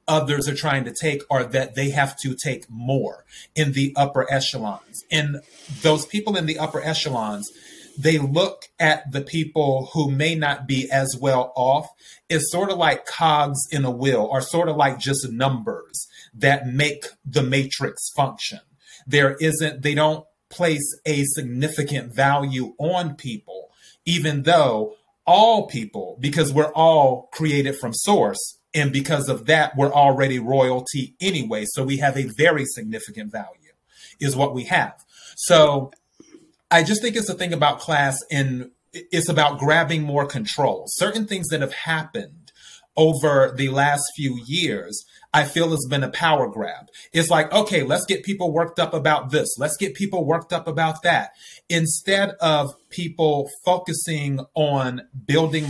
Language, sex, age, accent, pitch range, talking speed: English, male, 30-49, American, 135-165 Hz, 160 wpm